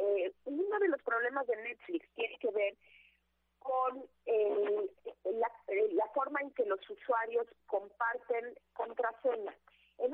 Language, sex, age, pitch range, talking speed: Spanish, female, 30-49, 195-275 Hz, 130 wpm